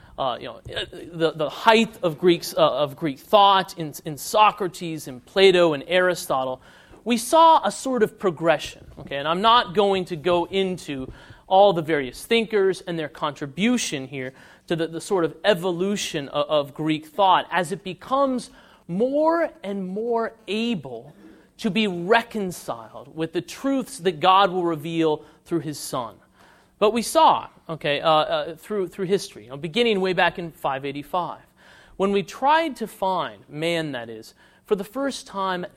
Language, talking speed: English, 165 wpm